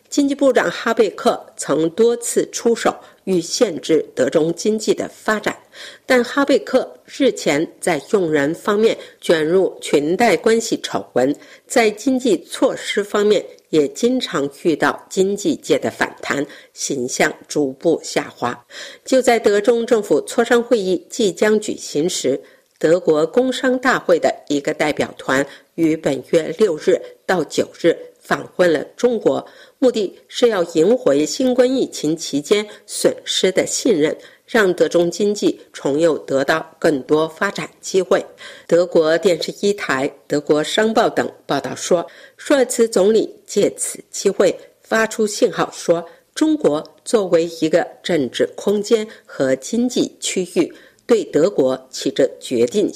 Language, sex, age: Chinese, female, 50-69